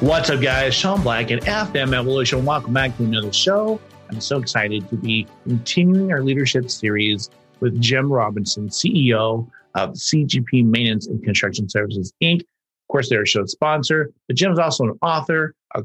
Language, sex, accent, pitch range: English, male, American, 110-135 Hz